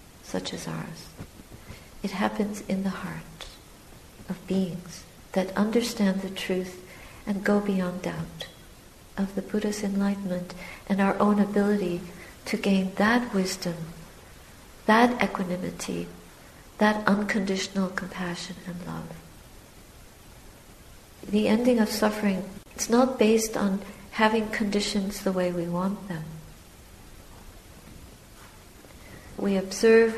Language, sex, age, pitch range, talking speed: English, female, 60-79, 180-215 Hz, 105 wpm